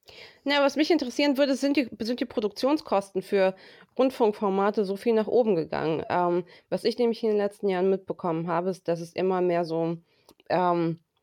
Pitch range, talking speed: 170-210 Hz, 180 wpm